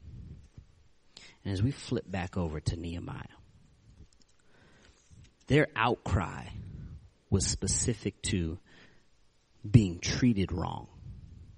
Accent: American